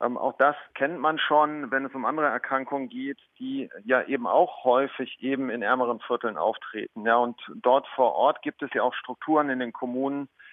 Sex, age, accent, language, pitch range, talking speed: male, 40-59, German, German, 120-135 Hz, 200 wpm